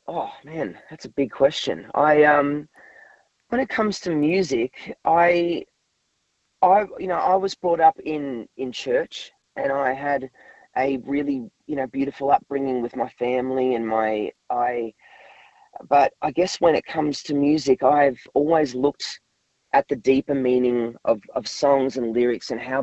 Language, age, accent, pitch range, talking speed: English, 30-49, Australian, 120-155 Hz, 160 wpm